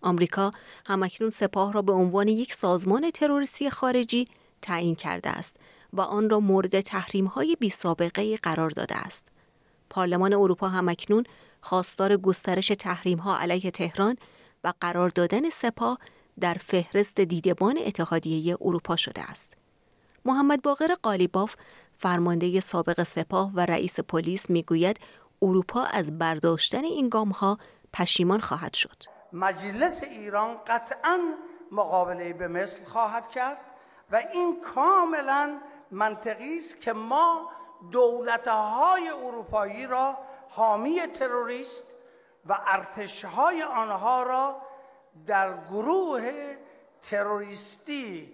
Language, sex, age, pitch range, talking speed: Persian, female, 30-49, 185-260 Hz, 110 wpm